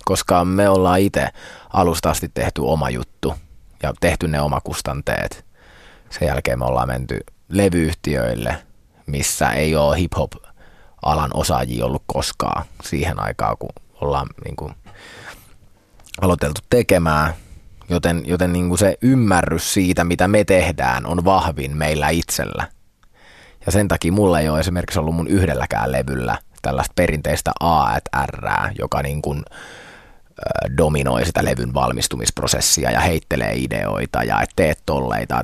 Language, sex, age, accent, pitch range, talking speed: Finnish, male, 20-39, native, 70-90 Hz, 125 wpm